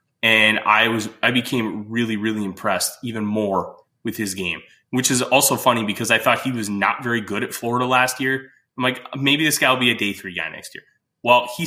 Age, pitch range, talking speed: 20-39, 105-130 Hz, 225 wpm